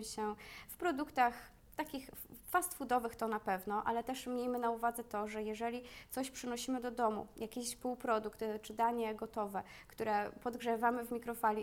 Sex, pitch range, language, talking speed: female, 215-245 Hz, Polish, 155 wpm